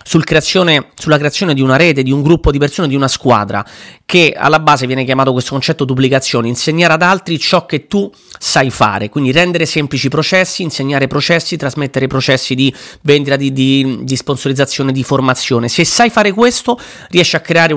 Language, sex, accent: Italian, male, native